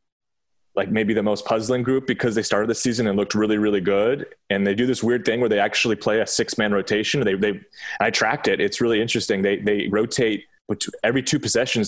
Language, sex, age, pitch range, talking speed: English, male, 20-39, 100-115 Hz, 220 wpm